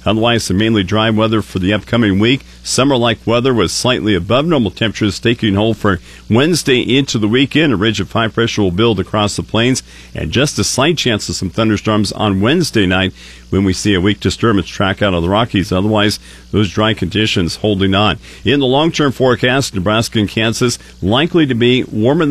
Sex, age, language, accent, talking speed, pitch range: male, 50-69, English, American, 195 wpm, 95-125 Hz